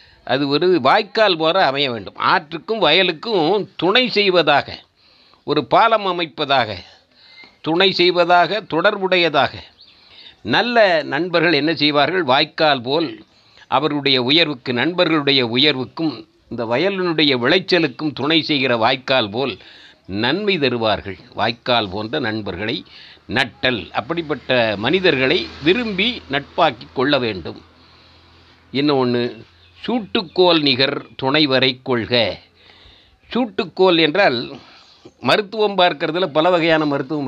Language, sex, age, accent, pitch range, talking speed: Tamil, male, 60-79, native, 130-185 Hz, 90 wpm